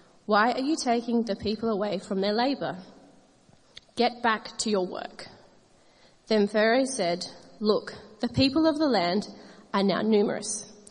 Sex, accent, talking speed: female, Australian, 150 wpm